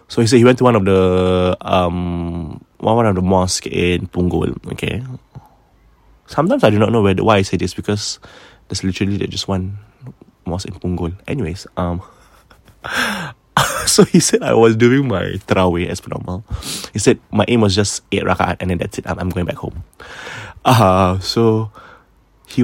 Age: 20-39